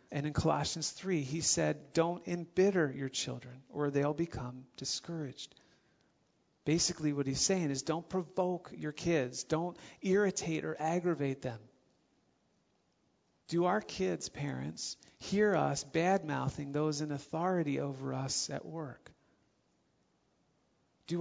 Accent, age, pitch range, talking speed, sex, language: American, 40-59, 140-175 Hz, 120 wpm, male, English